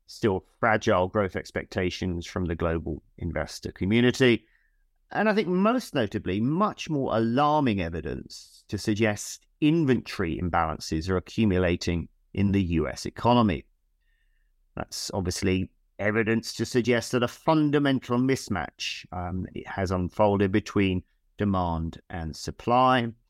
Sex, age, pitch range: male, 40-59, 90-120 Hz